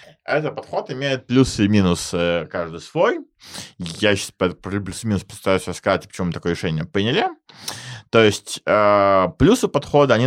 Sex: male